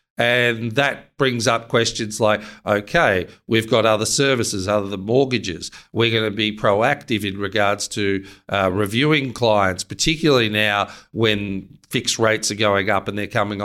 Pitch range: 105-125 Hz